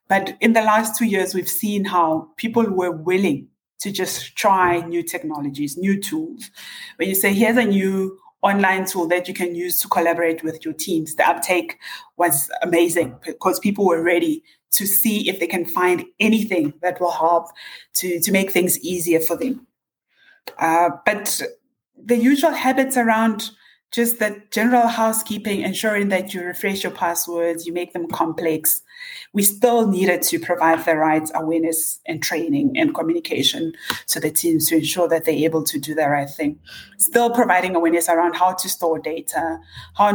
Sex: female